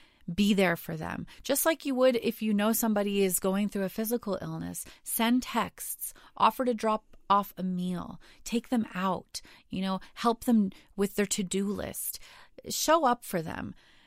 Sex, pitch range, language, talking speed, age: female, 185-230 Hz, English, 175 wpm, 30-49